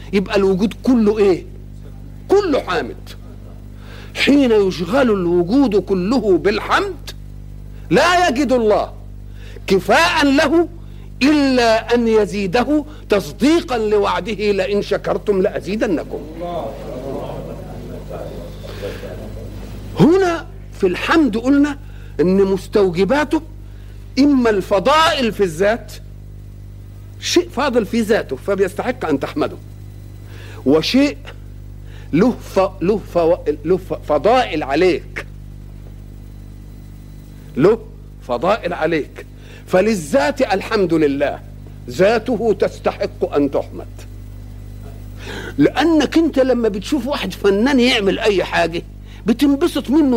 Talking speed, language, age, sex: 80 wpm, Arabic, 50-69, male